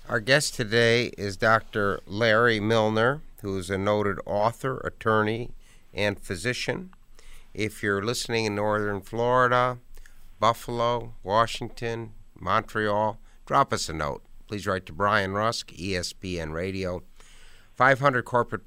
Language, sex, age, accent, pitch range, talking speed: English, male, 60-79, American, 95-110 Hz, 120 wpm